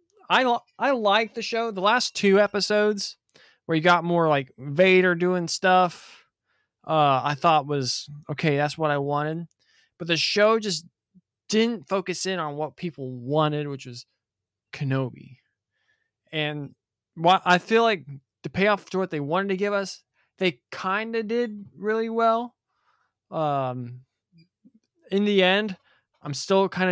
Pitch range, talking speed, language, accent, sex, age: 140-185 Hz, 150 wpm, English, American, male, 20-39